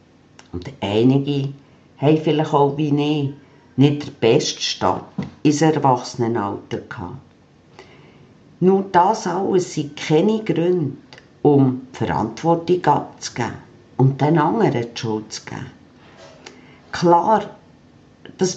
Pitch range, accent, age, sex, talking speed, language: 135-175 Hz, Austrian, 50-69, female, 105 wpm, German